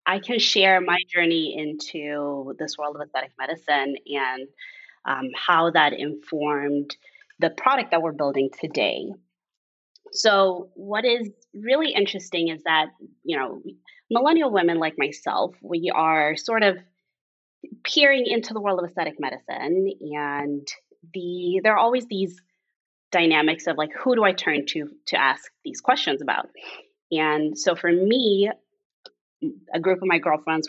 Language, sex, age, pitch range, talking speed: English, female, 20-39, 150-210 Hz, 145 wpm